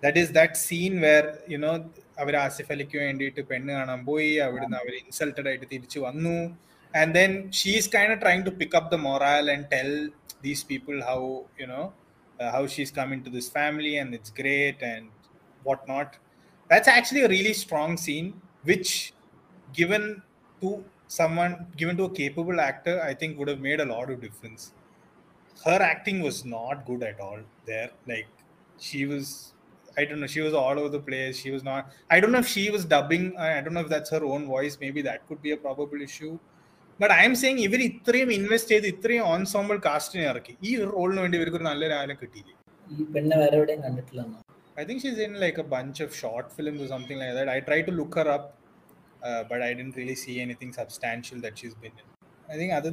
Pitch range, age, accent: 135-175 Hz, 20-39, native